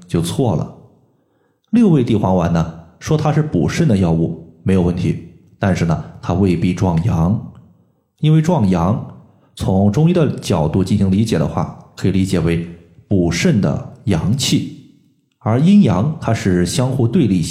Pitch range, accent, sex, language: 95-145 Hz, native, male, Chinese